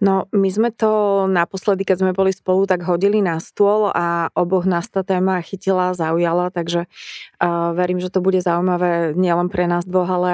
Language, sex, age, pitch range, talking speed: Slovak, female, 20-39, 175-195 Hz, 185 wpm